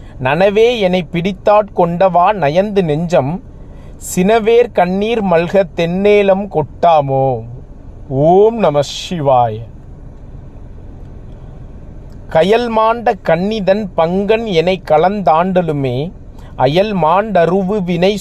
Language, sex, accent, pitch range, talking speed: Tamil, male, native, 145-205 Hz, 60 wpm